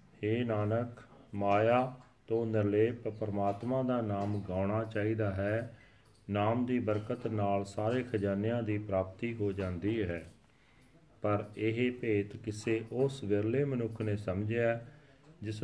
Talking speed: 125 wpm